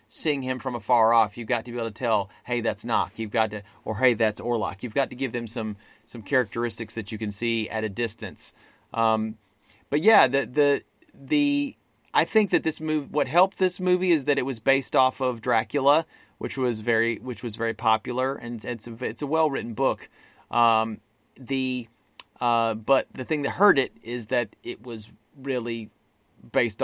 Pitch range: 110-135 Hz